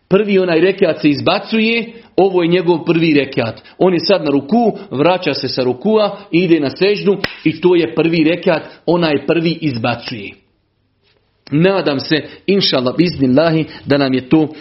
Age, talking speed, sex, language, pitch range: 40-59, 150 wpm, male, Croatian, 145-195 Hz